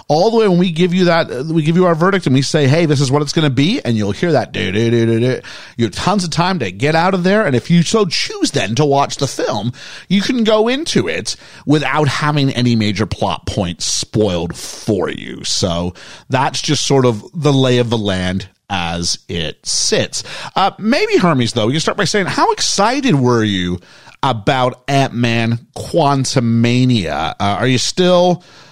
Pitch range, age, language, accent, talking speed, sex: 110-155 Hz, 40-59, English, American, 195 wpm, male